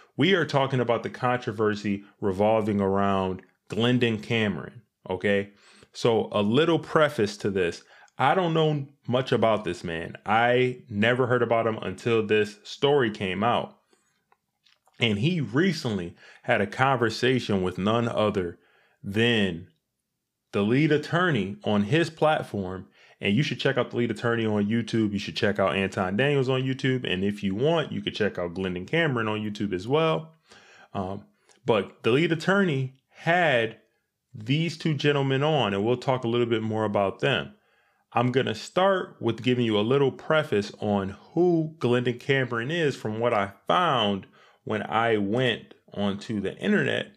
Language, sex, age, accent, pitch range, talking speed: English, male, 20-39, American, 105-140 Hz, 160 wpm